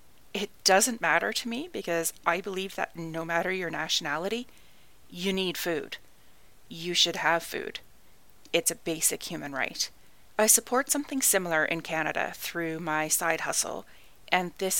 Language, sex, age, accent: English, female, 30-49, American